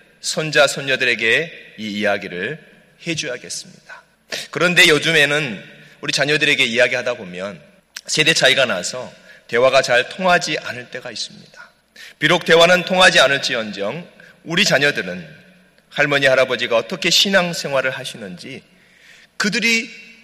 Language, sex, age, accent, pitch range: Korean, male, 30-49, native, 135-185 Hz